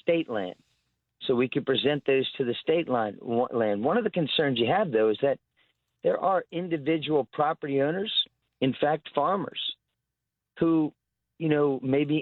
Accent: American